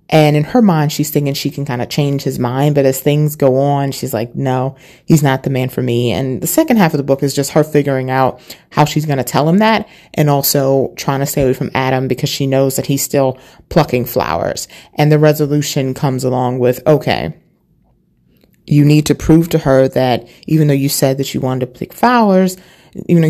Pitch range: 130-155 Hz